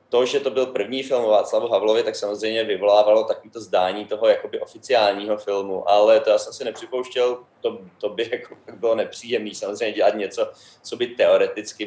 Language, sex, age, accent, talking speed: Czech, male, 20-39, native, 180 wpm